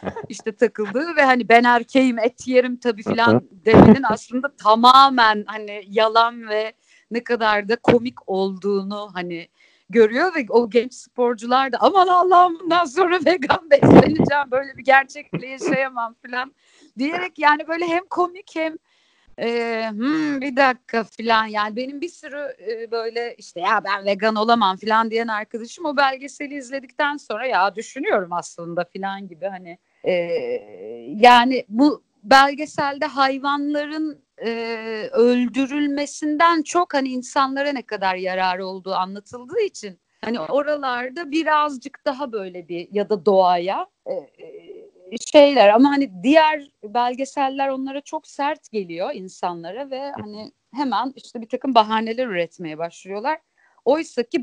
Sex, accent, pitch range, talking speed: female, native, 215-290 Hz, 135 wpm